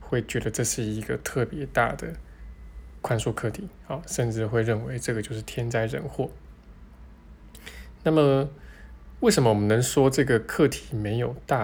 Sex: male